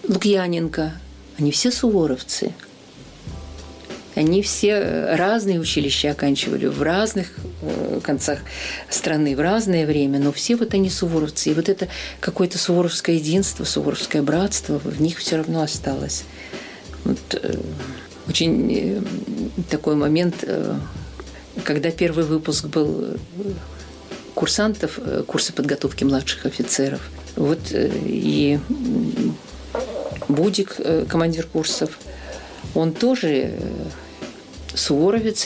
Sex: female